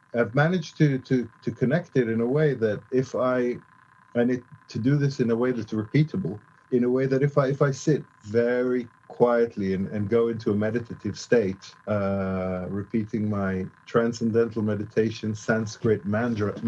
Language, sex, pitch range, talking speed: English, male, 110-130 Hz, 175 wpm